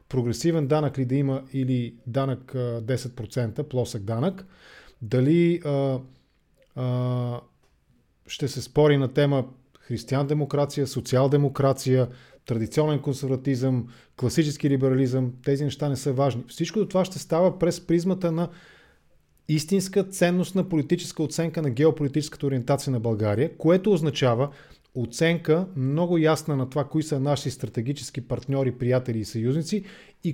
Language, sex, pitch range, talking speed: English, male, 125-165 Hz, 120 wpm